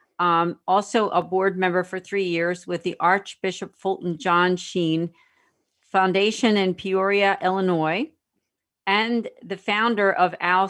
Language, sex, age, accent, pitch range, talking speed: English, female, 50-69, American, 180-205 Hz, 130 wpm